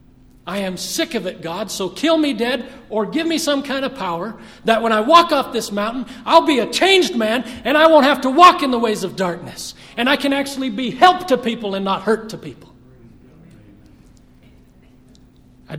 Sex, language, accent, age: male, English, American, 40-59